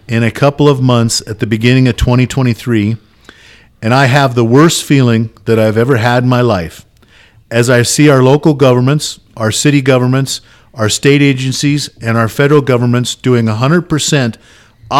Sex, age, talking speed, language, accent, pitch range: male, 50-69, 165 wpm, English, American, 110-135 Hz